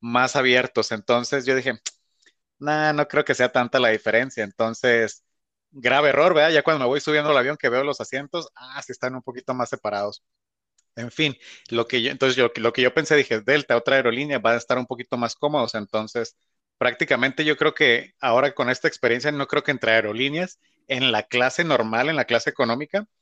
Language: English